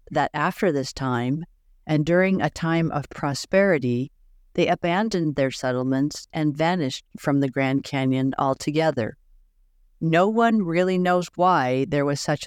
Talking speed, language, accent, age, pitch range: 140 wpm, English, American, 50-69, 130-170 Hz